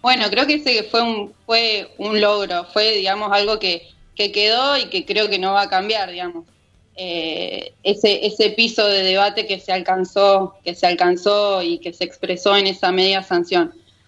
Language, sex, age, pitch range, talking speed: Spanish, female, 20-39, 185-225 Hz, 190 wpm